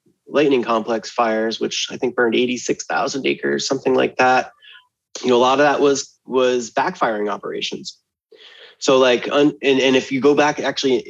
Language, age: English, 20-39